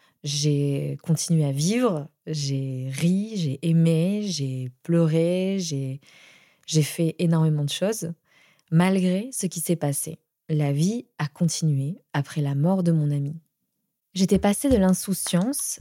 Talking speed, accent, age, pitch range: 135 wpm, French, 20-39, 160-195 Hz